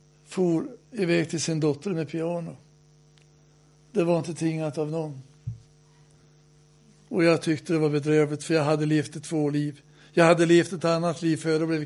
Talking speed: 175 wpm